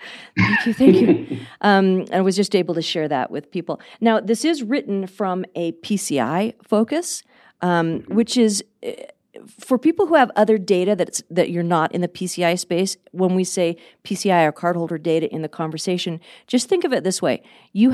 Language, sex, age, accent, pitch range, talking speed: English, female, 40-59, American, 170-215 Hz, 190 wpm